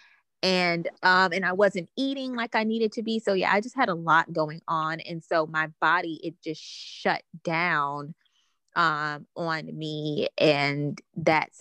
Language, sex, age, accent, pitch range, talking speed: English, female, 20-39, American, 145-175 Hz, 170 wpm